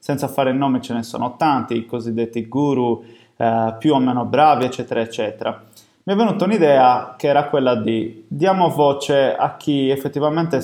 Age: 20-39